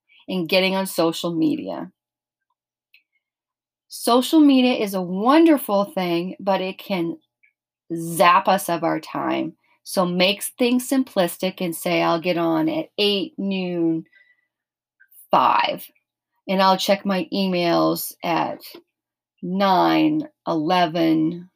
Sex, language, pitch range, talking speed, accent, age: female, English, 170-225 Hz, 110 wpm, American, 40-59